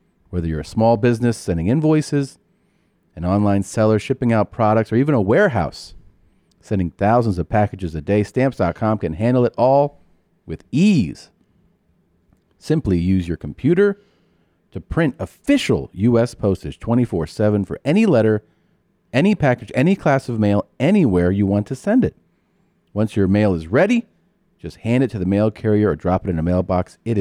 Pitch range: 90-115 Hz